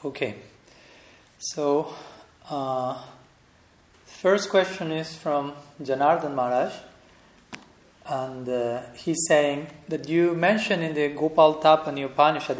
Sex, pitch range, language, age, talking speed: male, 140-165 Hz, English, 40-59, 100 wpm